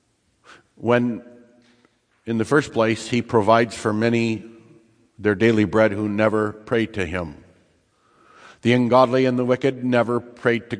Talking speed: 140 wpm